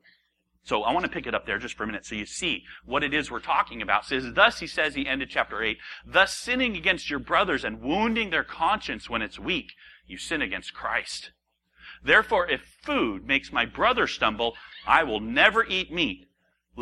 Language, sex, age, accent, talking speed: English, male, 40-59, American, 200 wpm